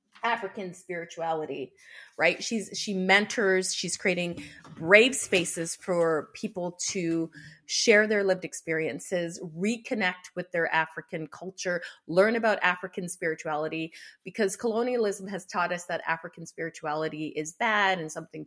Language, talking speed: English, 125 wpm